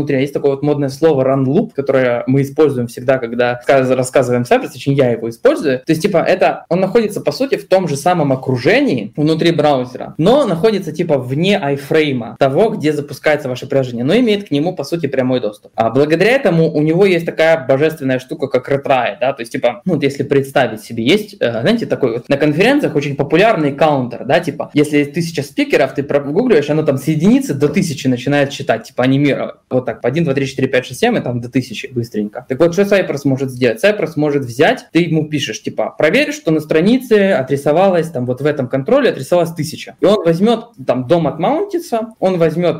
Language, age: Russian, 20-39